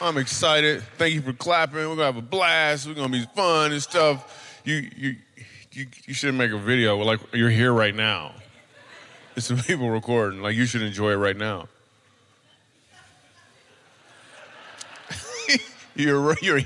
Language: English